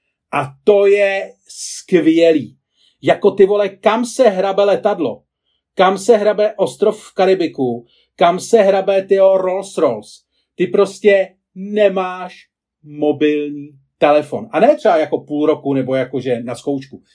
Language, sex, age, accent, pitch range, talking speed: Czech, male, 40-59, native, 165-205 Hz, 130 wpm